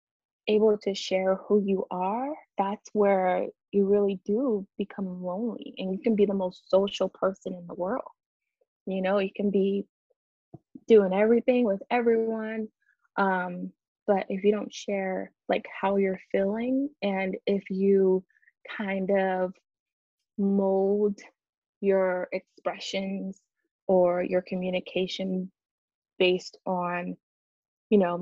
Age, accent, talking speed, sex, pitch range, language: 20-39, American, 125 wpm, female, 185-225 Hz, English